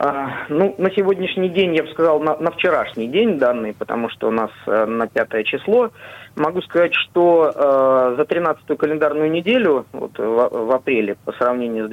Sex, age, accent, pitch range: male, 20-39, native, 130-170 Hz